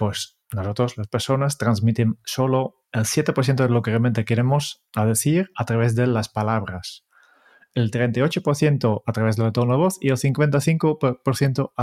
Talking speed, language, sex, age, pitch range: 155 wpm, Spanish, male, 30-49, 115-145 Hz